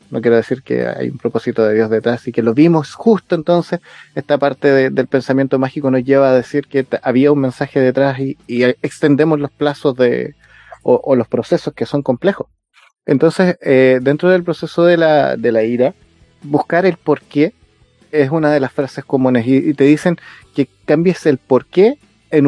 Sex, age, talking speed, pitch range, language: male, 30-49, 195 wpm, 130-165 Hz, Spanish